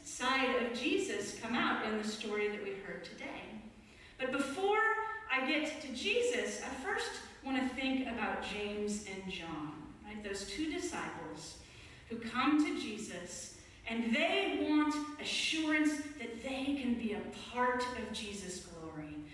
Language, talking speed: English, 150 wpm